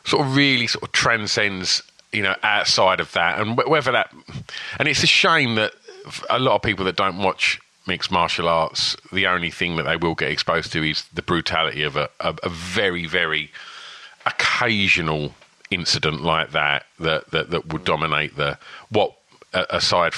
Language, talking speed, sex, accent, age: English, 175 wpm, male, British, 40-59